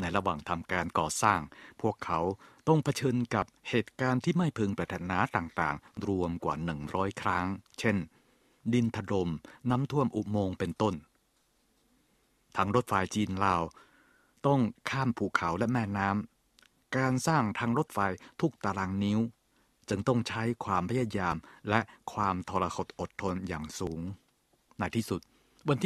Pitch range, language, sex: 90-120 Hz, Thai, male